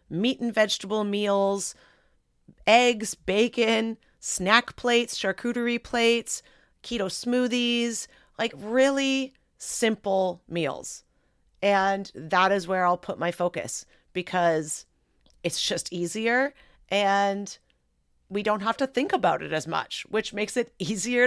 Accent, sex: American, female